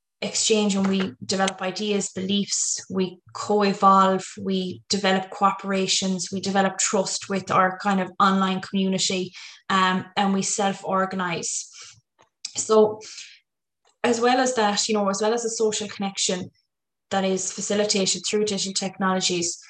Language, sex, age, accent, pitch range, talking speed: English, female, 20-39, Irish, 190-210 Hz, 130 wpm